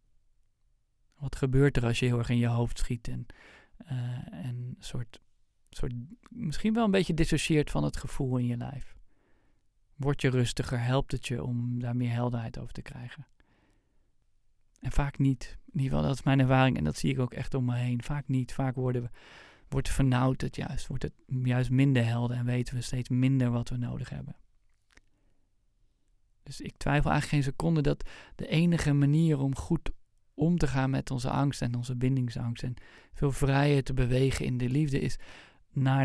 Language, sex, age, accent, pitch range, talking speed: Dutch, male, 40-59, Dutch, 120-135 Hz, 180 wpm